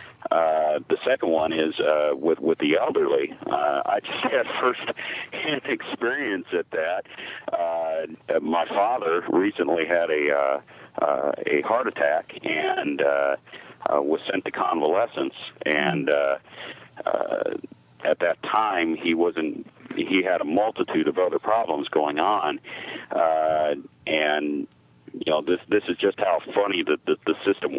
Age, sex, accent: 50-69, male, American